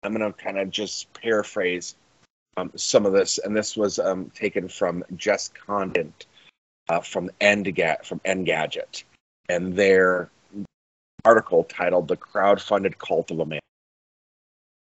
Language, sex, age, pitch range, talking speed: English, male, 30-49, 90-110 Hz, 135 wpm